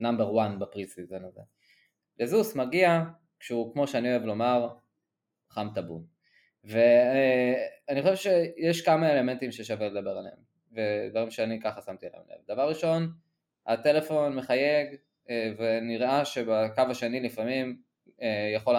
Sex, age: male, 20-39